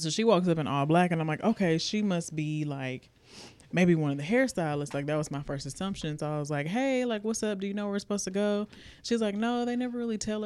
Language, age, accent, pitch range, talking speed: English, 20-39, American, 140-180 Hz, 280 wpm